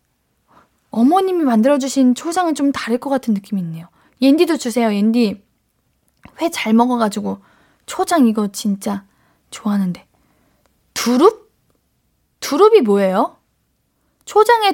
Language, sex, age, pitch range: Korean, female, 20-39, 215-335 Hz